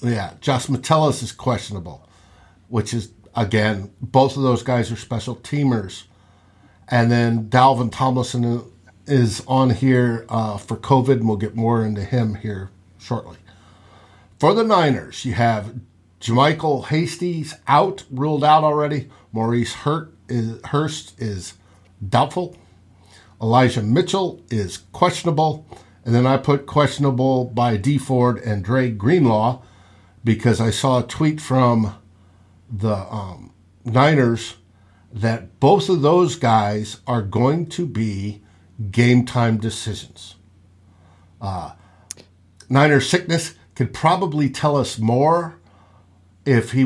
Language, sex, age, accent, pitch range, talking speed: English, male, 50-69, American, 100-130 Hz, 120 wpm